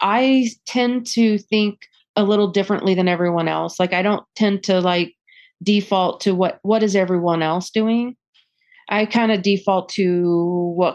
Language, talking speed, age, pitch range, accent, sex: English, 165 wpm, 30-49, 165-210 Hz, American, female